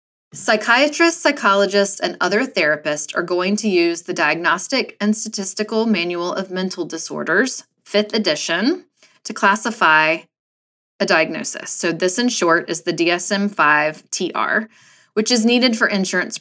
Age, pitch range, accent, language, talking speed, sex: 20-39, 175-225 Hz, American, English, 130 wpm, female